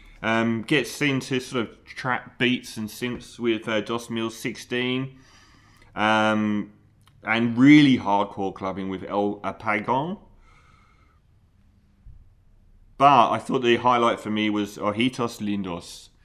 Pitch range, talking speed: 90-125 Hz, 120 wpm